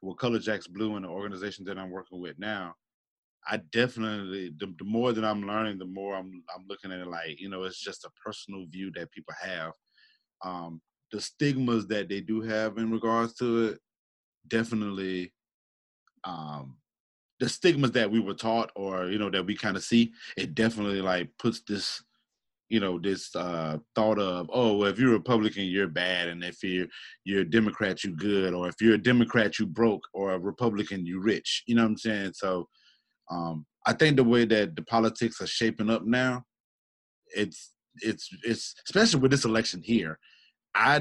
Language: English